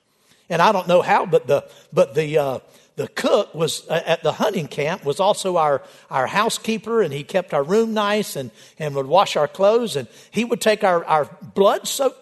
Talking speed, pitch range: 205 wpm, 175-225 Hz